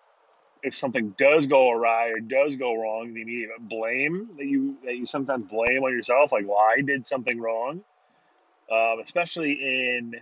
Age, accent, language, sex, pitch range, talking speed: 30-49, American, English, male, 110-130 Hz, 175 wpm